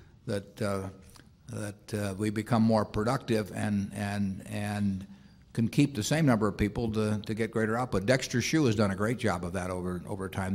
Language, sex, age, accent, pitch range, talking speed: English, male, 50-69, American, 100-120 Hz, 200 wpm